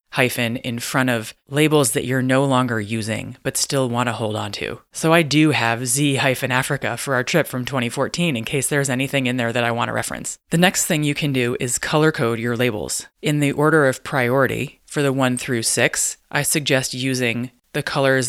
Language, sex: English, female